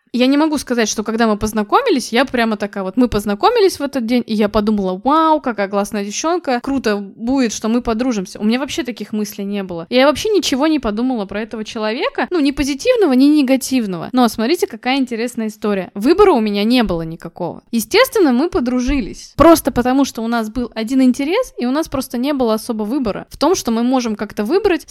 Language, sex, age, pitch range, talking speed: Russian, female, 20-39, 215-285 Hz, 205 wpm